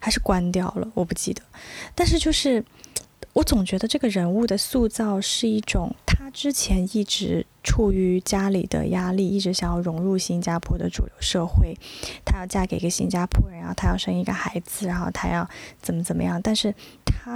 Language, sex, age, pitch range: Chinese, female, 20-39, 175-215 Hz